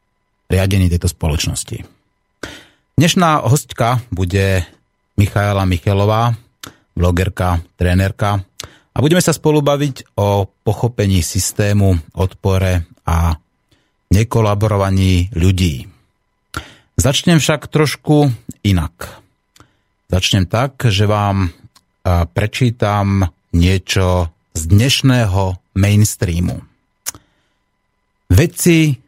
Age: 30-49